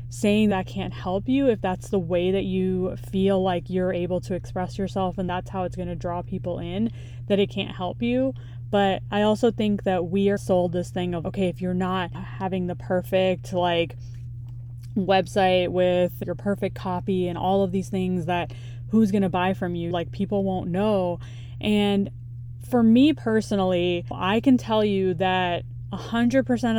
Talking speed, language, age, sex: 185 wpm, English, 20-39, female